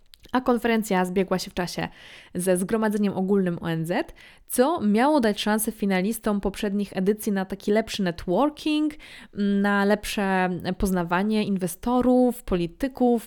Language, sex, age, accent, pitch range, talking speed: Polish, female, 20-39, native, 180-215 Hz, 120 wpm